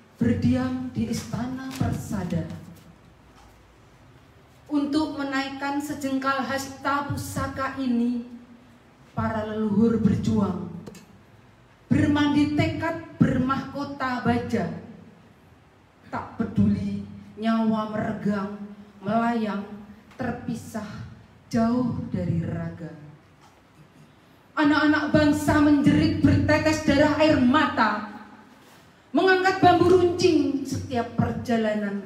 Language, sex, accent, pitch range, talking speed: Indonesian, female, native, 205-285 Hz, 70 wpm